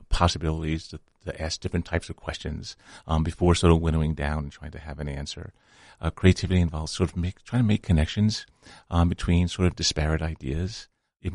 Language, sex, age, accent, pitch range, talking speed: English, male, 40-59, American, 80-95 Hz, 195 wpm